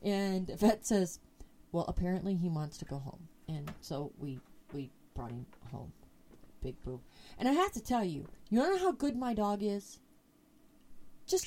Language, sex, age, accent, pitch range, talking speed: English, female, 30-49, American, 170-220 Hz, 180 wpm